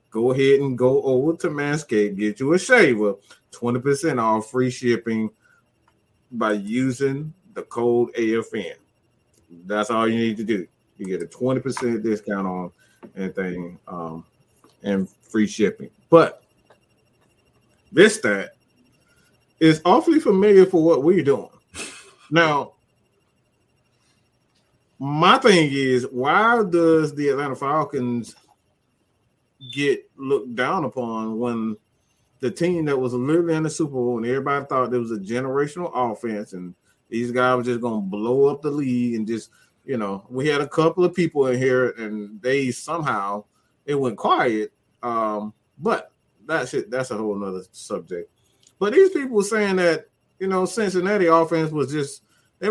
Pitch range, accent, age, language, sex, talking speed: 115-165 Hz, American, 30-49, English, male, 145 wpm